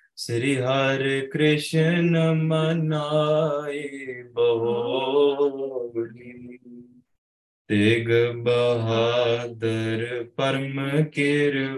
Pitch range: 120-145 Hz